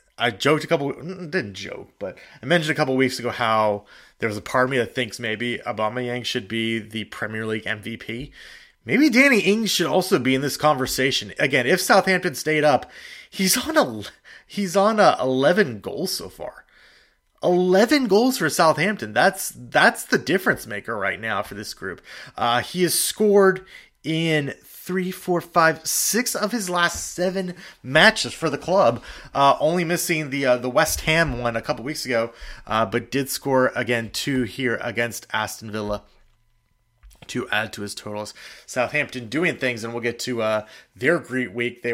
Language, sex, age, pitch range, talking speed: English, male, 30-49, 115-170 Hz, 180 wpm